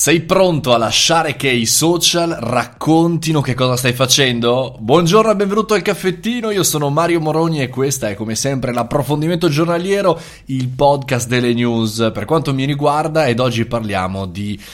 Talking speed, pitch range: 165 wpm, 110-155 Hz